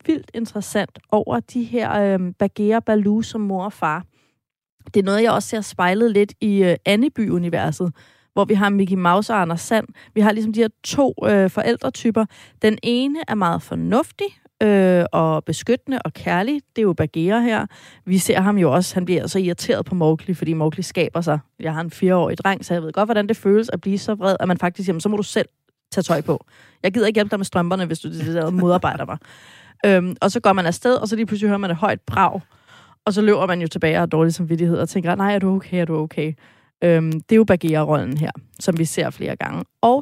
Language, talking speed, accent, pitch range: Danish, 235 wpm, native, 170-215 Hz